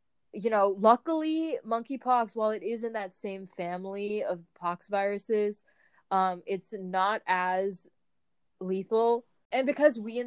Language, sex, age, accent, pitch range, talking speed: English, female, 20-39, American, 190-230 Hz, 135 wpm